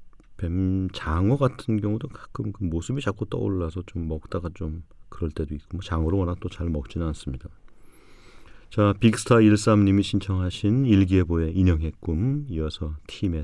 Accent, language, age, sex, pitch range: native, Korean, 40-59, male, 85-110 Hz